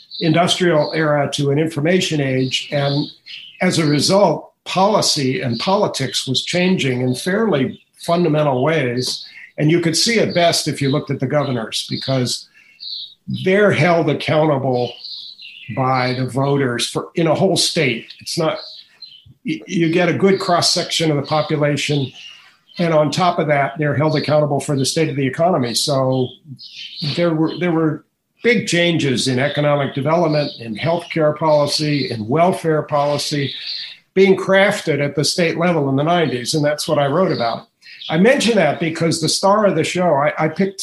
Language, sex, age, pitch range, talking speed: English, male, 50-69, 140-170 Hz, 165 wpm